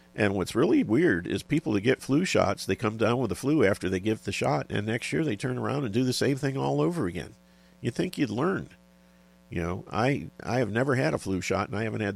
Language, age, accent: English, 50-69, American